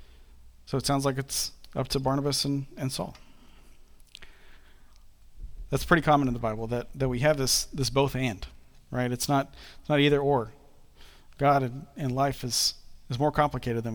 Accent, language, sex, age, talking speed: American, English, male, 40-59, 175 wpm